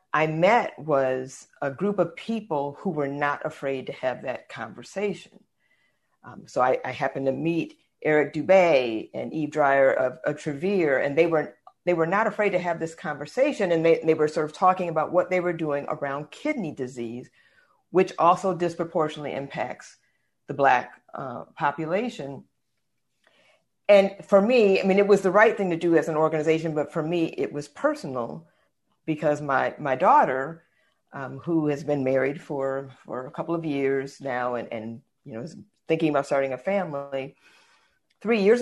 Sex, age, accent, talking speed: female, 50-69, American, 175 wpm